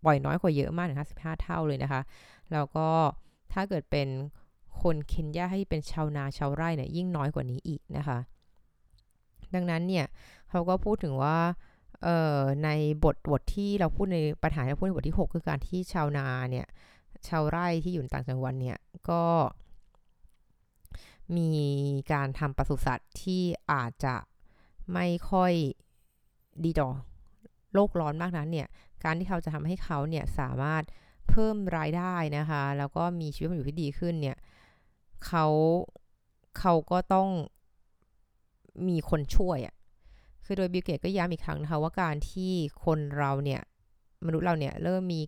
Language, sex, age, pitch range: Thai, female, 20-39, 140-175 Hz